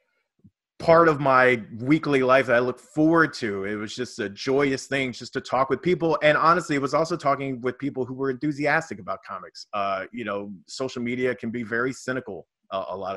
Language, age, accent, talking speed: English, 30-49, American, 210 wpm